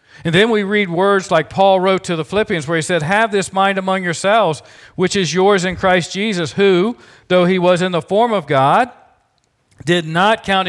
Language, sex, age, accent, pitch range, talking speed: English, male, 50-69, American, 140-195 Hz, 210 wpm